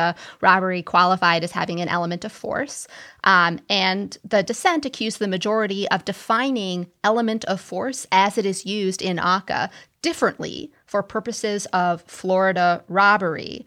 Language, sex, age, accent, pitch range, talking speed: English, female, 20-39, American, 180-220 Hz, 140 wpm